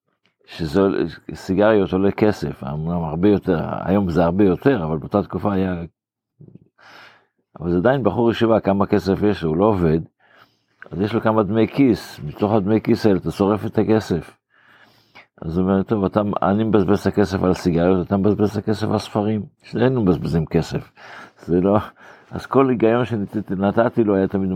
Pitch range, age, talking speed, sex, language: 95-115 Hz, 50-69, 165 wpm, male, Hebrew